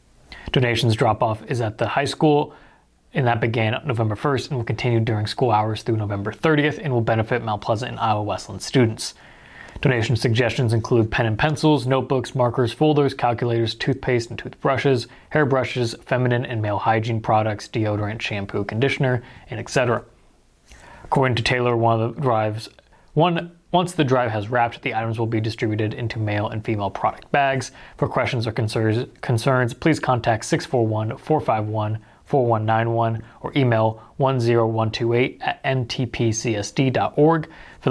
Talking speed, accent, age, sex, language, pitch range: 145 wpm, American, 20-39, male, English, 110-130 Hz